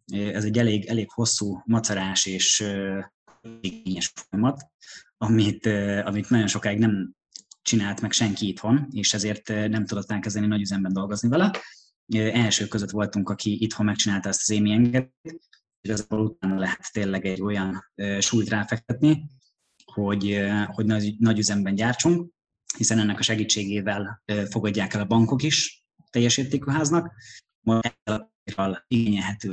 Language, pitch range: Hungarian, 100-115 Hz